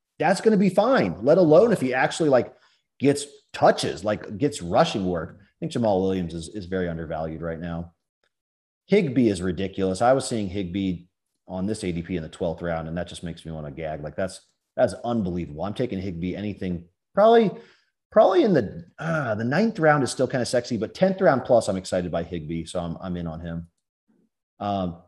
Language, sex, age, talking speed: English, male, 30-49, 205 wpm